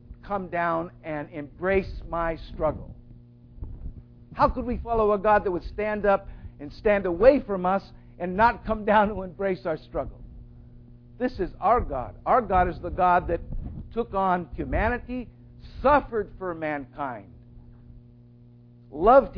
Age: 50-69